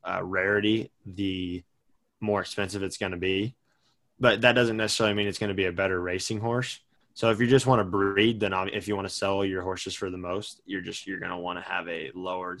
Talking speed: 240 wpm